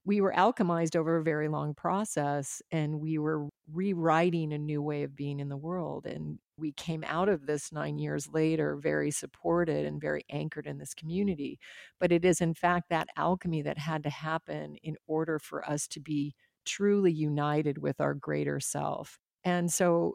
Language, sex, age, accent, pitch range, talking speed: English, female, 40-59, American, 150-180 Hz, 185 wpm